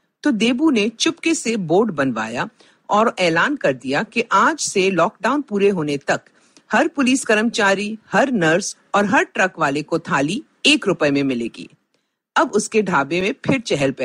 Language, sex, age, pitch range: Hindi, female, 50-69, 170-265 Hz